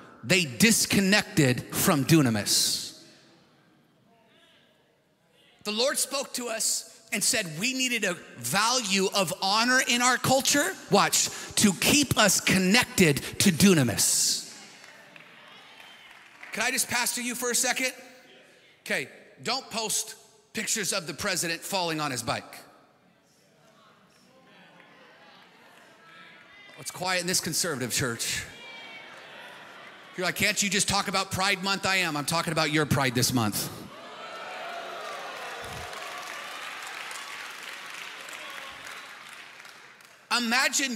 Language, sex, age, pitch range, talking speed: English, male, 40-59, 185-230 Hz, 100 wpm